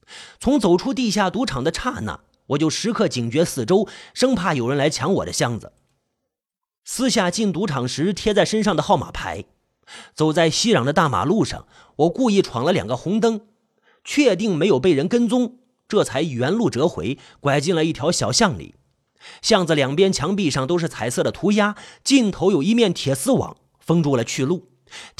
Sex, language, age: male, Chinese, 30-49